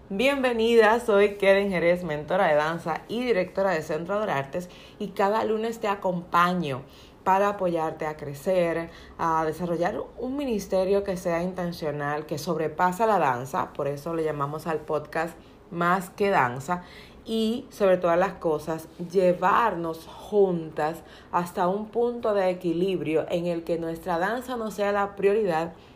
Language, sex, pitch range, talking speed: Spanish, female, 160-205 Hz, 145 wpm